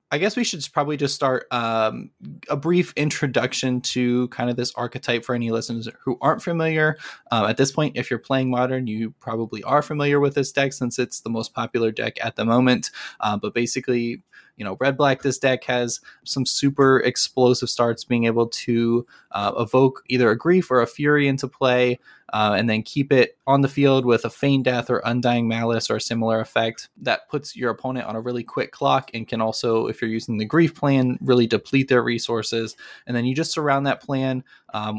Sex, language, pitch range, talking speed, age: male, English, 115-135 Hz, 210 wpm, 20-39